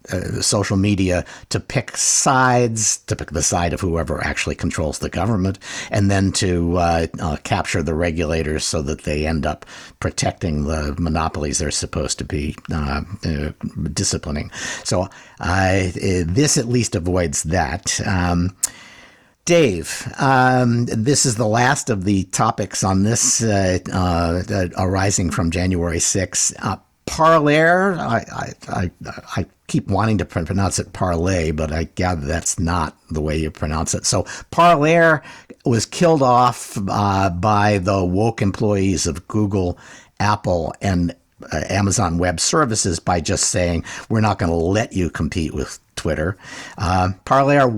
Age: 50-69